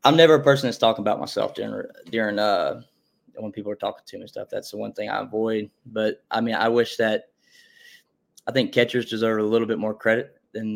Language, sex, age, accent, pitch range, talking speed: English, male, 20-39, American, 105-120 Hz, 235 wpm